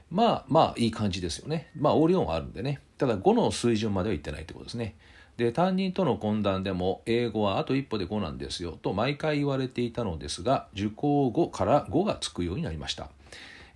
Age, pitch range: 40-59, 90-135 Hz